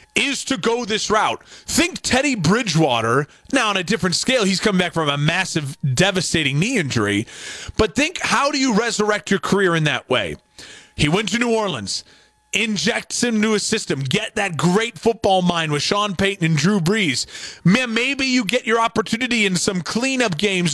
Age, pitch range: 30-49, 165-230 Hz